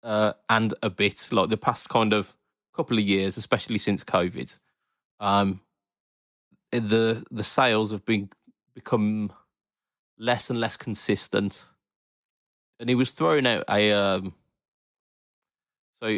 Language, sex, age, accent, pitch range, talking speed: English, male, 20-39, British, 100-120 Hz, 125 wpm